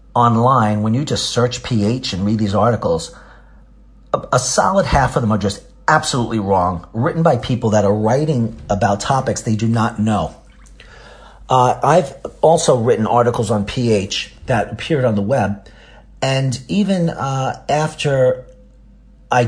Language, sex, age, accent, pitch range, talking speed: English, male, 40-59, American, 105-130 Hz, 150 wpm